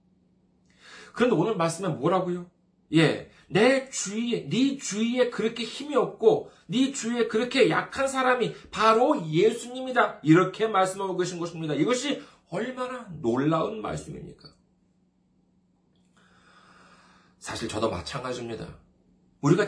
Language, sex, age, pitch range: Korean, male, 40-59, 125-200 Hz